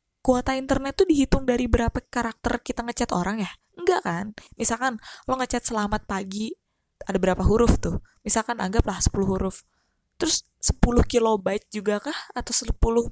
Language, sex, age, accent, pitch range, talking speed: Indonesian, female, 20-39, native, 195-285 Hz, 150 wpm